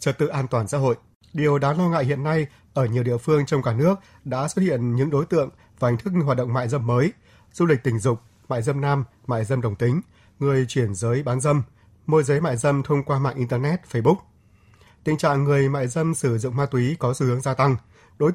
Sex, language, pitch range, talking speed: male, Vietnamese, 120-150 Hz, 240 wpm